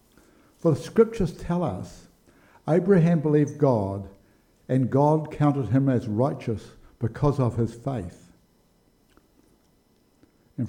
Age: 60-79